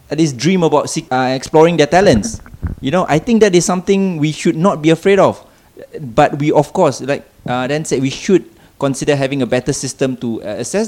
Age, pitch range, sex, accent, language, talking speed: 20-39, 125-160 Hz, male, Malaysian, English, 215 wpm